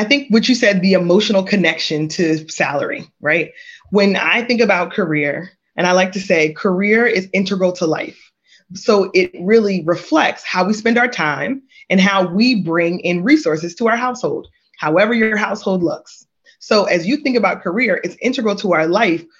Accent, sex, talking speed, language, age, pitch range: American, female, 185 wpm, English, 20-39, 170-225 Hz